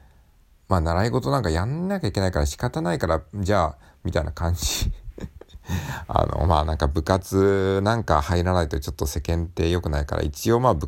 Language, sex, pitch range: Japanese, male, 75-100 Hz